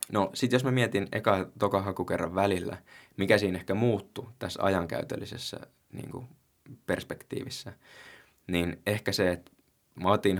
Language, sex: Finnish, male